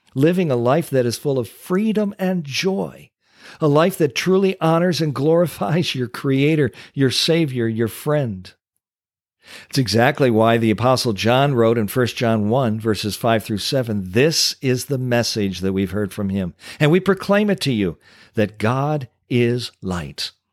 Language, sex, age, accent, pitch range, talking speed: English, male, 50-69, American, 95-140 Hz, 165 wpm